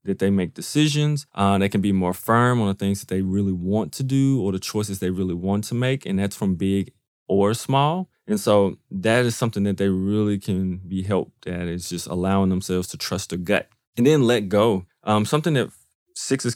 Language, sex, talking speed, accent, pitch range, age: English, male, 220 wpm, American, 95-115 Hz, 20-39